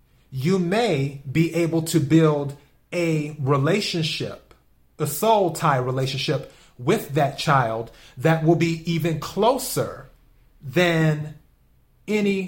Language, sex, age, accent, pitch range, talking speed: English, male, 30-49, American, 140-175 Hz, 105 wpm